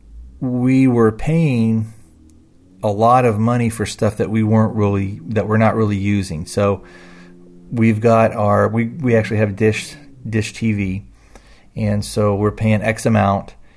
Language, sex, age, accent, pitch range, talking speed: English, male, 40-59, American, 100-115 Hz, 155 wpm